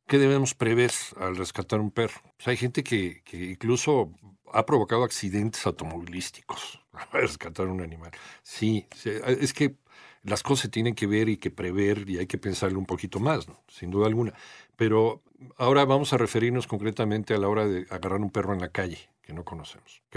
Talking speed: 185 wpm